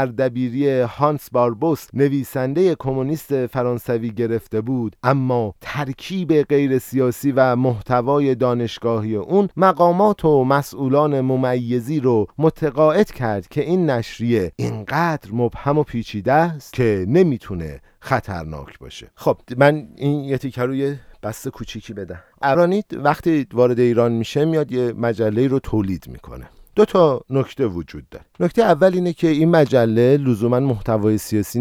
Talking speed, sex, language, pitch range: 130 wpm, male, Persian, 105-140 Hz